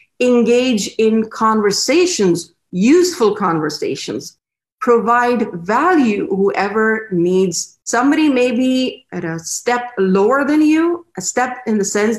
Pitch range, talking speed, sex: 185-245 Hz, 110 wpm, female